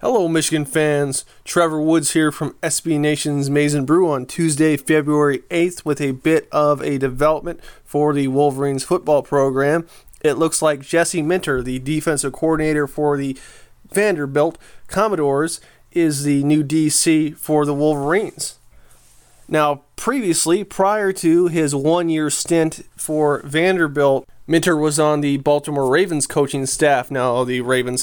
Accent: American